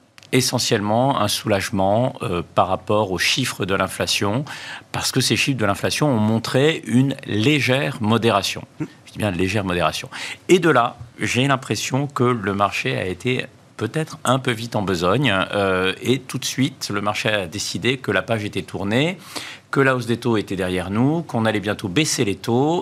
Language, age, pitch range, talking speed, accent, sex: French, 50-69, 100-135 Hz, 185 wpm, French, male